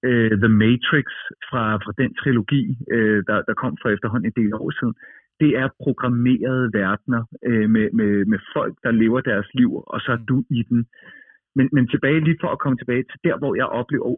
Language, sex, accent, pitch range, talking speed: Danish, male, native, 115-145 Hz, 190 wpm